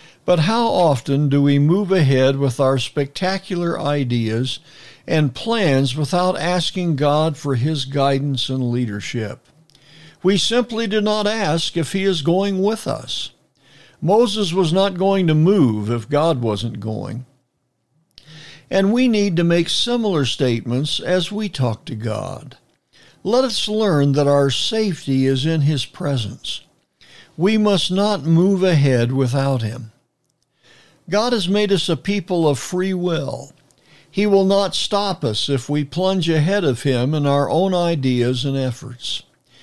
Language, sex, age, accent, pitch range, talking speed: English, male, 60-79, American, 135-190 Hz, 145 wpm